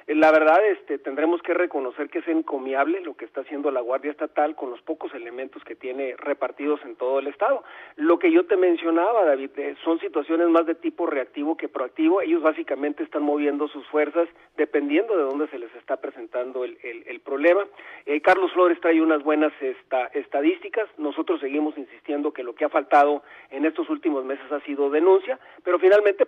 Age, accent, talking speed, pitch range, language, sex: 40-59, Mexican, 190 wpm, 145-190 Hz, Spanish, male